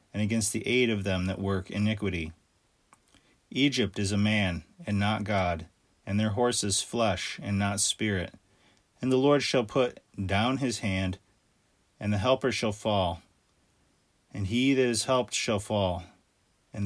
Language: English